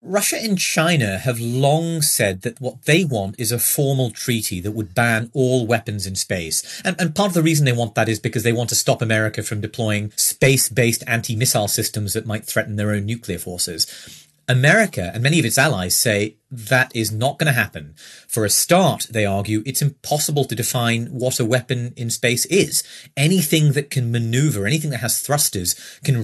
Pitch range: 110-145 Hz